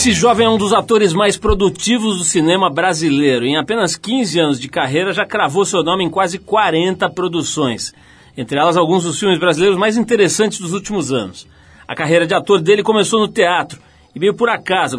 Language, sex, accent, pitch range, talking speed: Portuguese, male, Brazilian, 150-195 Hz, 190 wpm